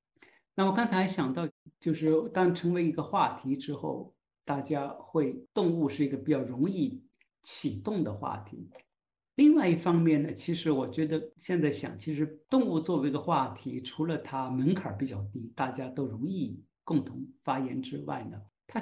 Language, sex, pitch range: Chinese, male, 130-175 Hz